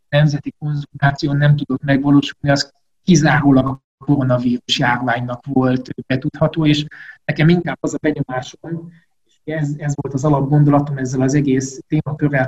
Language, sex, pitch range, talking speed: Hungarian, male, 135-155 Hz, 135 wpm